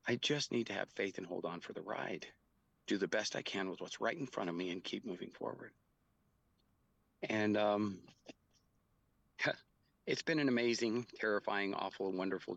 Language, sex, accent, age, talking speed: English, male, American, 40-59, 175 wpm